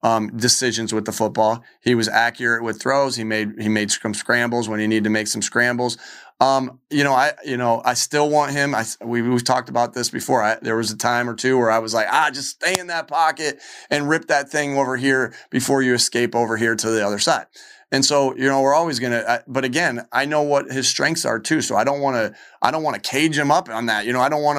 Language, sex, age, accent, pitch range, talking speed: English, male, 30-49, American, 115-135 Hz, 265 wpm